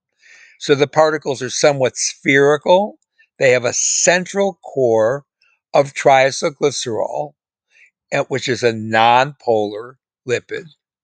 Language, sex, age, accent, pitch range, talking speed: English, male, 60-79, American, 120-185 Hz, 100 wpm